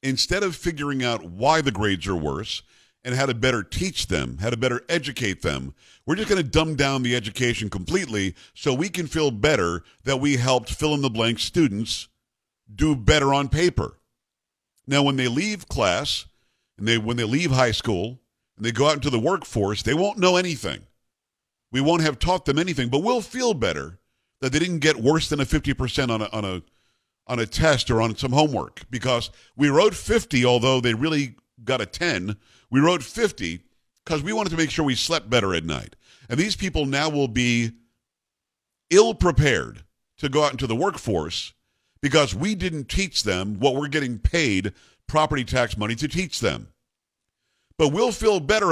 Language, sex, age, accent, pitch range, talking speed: English, male, 50-69, American, 115-155 Hz, 185 wpm